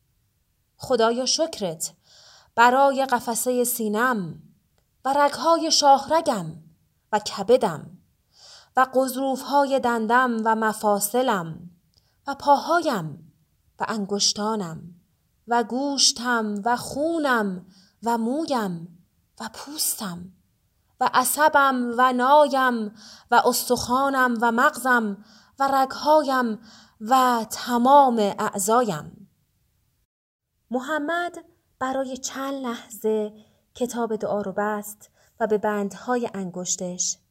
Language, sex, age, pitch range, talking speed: Persian, female, 30-49, 195-255 Hz, 85 wpm